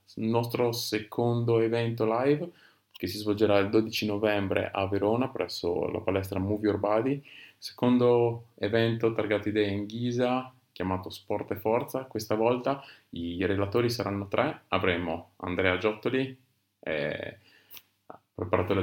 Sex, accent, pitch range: male, native, 95-115 Hz